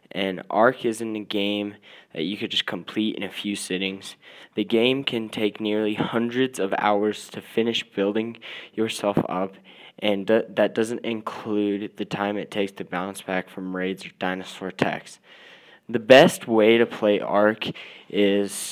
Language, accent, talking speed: English, American, 160 wpm